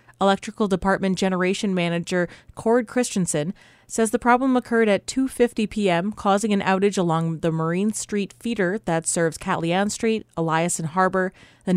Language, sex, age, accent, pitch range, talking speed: English, female, 30-49, American, 170-210 Hz, 145 wpm